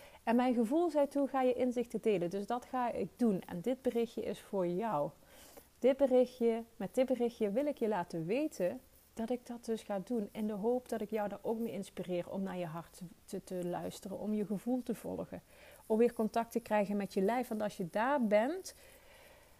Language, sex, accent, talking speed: Dutch, female, Dutch, 215 wpm